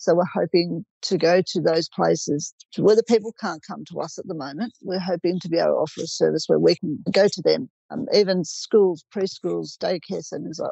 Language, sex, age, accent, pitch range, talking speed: English, female, 50-69, Australian, 170-210 Hz, 220 wpm